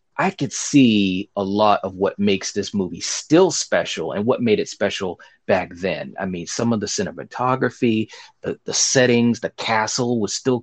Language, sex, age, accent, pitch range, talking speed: English, male, 30-49, American, 100-130 Hz, 180 wpm